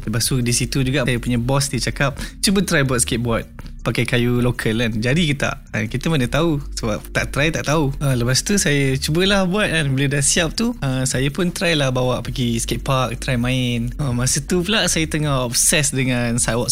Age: 20-39